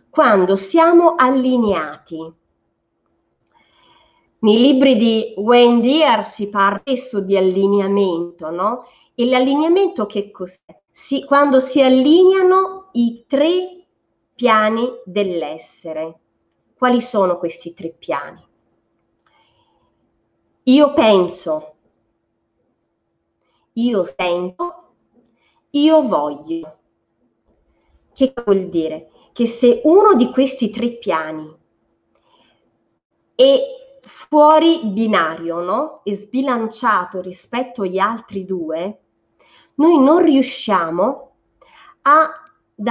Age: 30-49